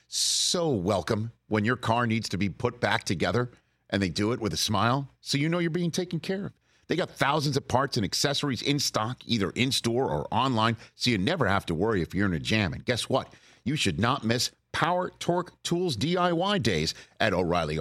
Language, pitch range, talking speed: English, 115-170 Hz, 220 wpm